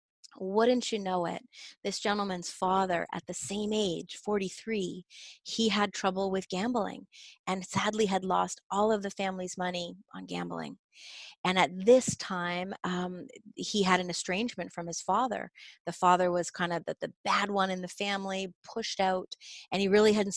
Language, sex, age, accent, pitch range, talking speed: English, female, 30-49, American, 180-215 Hz, 170 wpm